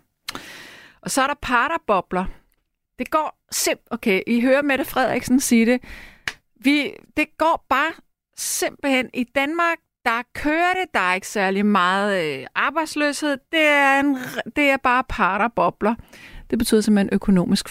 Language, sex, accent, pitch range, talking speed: Danish, female, native, 180-260 Hz, 140 wpm